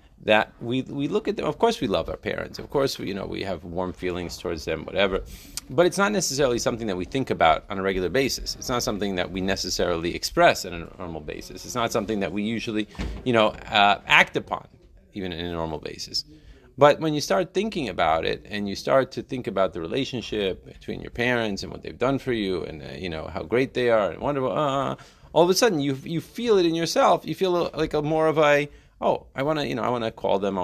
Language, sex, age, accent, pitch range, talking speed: English, male, 30-49, American, 100-150 Hz, 245 wpm